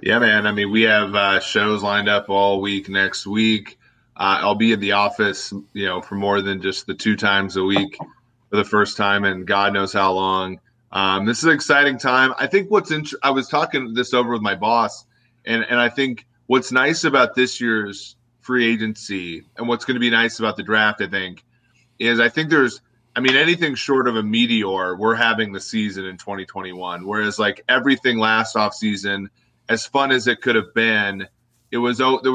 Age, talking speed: 30-49, 210 wpm